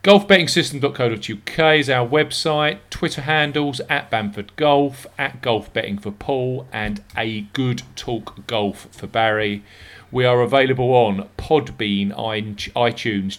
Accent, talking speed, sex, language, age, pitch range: British, 120 wpm, male, English, 40-59, 100-135 Hz